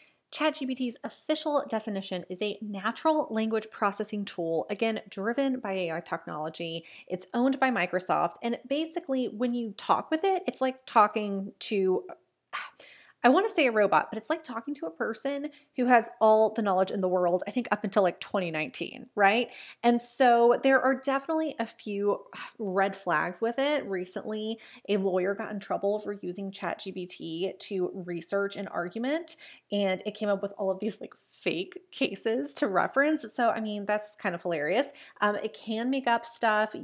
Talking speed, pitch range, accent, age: 175 wpm, 195-260 Hz, American, 30-49